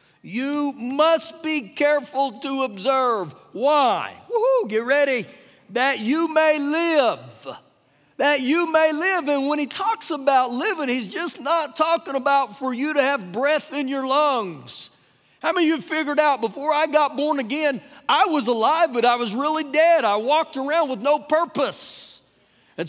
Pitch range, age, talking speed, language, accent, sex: 205-300 Hz, 50-69, 165 wpm, English, American, male